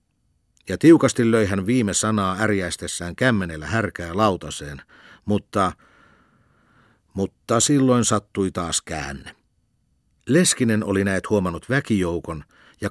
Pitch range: 90-115 Hz